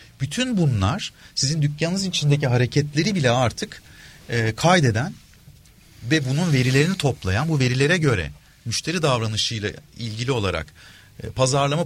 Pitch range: 105-160 Hz